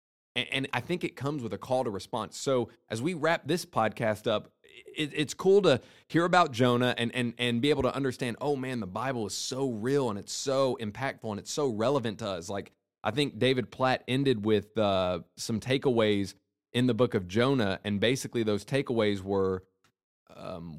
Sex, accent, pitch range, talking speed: male, American, 100-130 Hz, 195 wpm